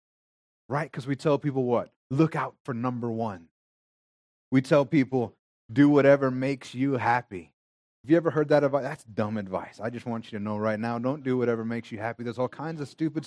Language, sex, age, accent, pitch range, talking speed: English, male, 30-49, American, 105-135 Hz, 215 wpm